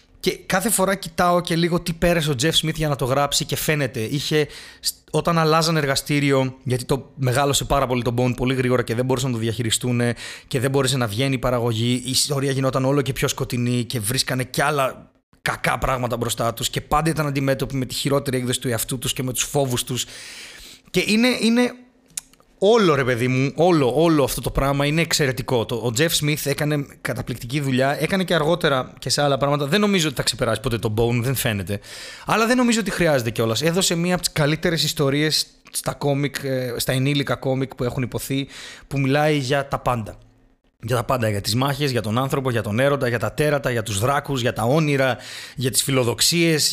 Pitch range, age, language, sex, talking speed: 125-155 Hz, 30-49, Greek, male, 205 wpm